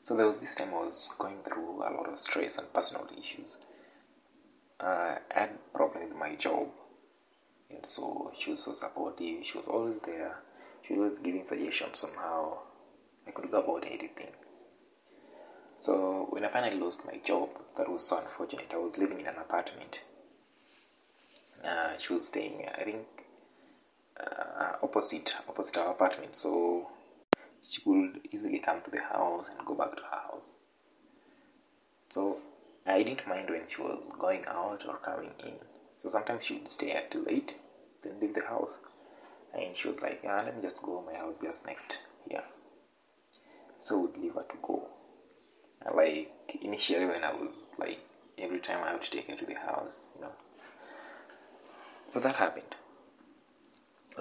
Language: English